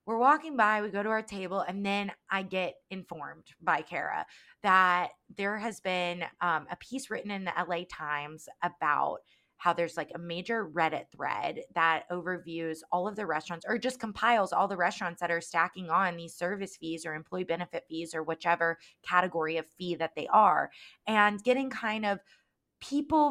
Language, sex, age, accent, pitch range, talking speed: English, female, 20-39, American, 180-225 Hz, 185 wpm